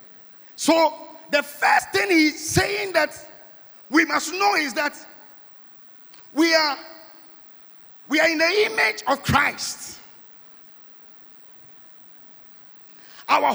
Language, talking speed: English, 95 wpm